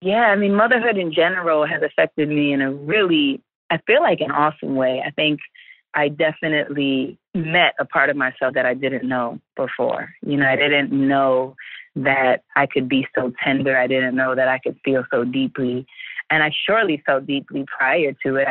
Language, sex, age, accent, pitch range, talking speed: English, female, 20-39, American, 130-155 Hz, 195 wpm